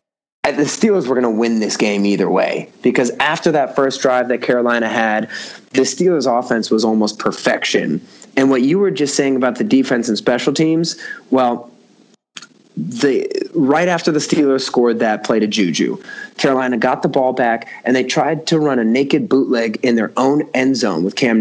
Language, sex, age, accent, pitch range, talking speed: English, male, 20-39, American, 115-150 Hz, 190 wpm